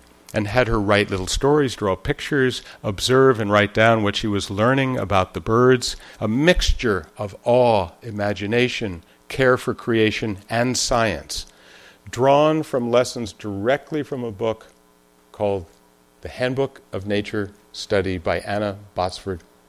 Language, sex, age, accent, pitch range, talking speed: English, male, 50-69, American, 90-120 Hz, 135 wpm